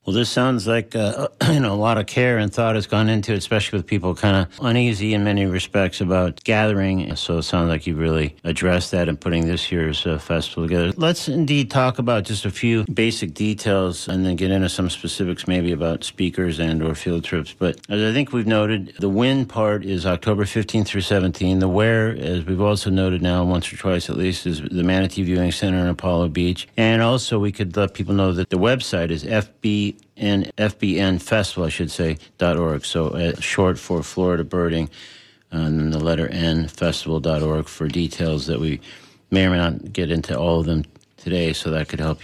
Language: English